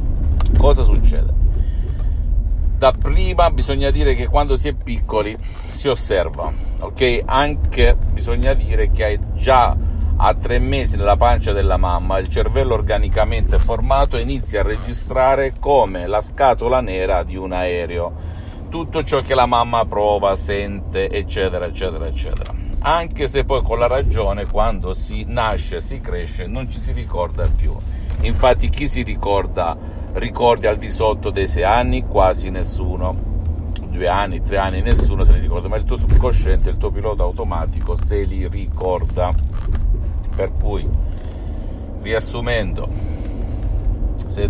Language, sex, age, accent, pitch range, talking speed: Italian, male, 50-69, native, 80-105 Hz, 140 wpm